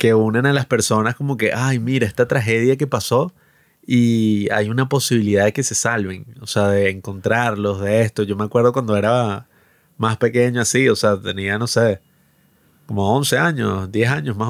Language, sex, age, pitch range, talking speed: Spanish, male, 30-49, 105-130 Hz, 190 wpm